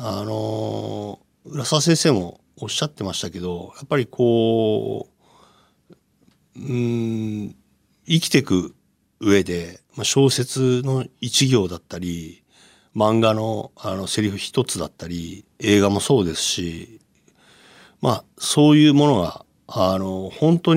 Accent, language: native, Japanese